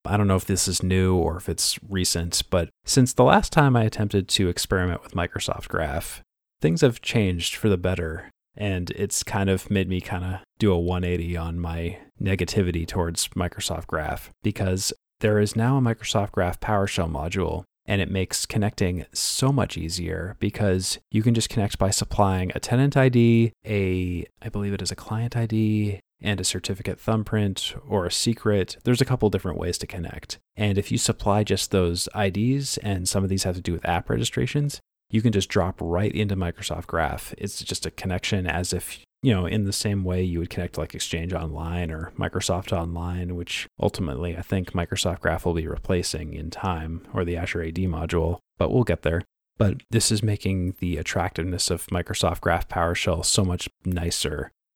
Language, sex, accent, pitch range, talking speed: English, male, American, 85-105 Hz, 190 wpm